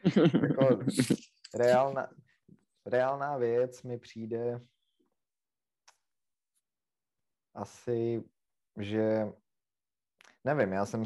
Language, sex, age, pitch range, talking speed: Czech, male, 20-39, 95-110 Hz, 60 wpm